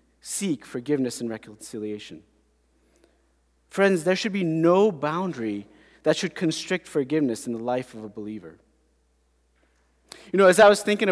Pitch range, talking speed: 120-185 Hz, 140 wpm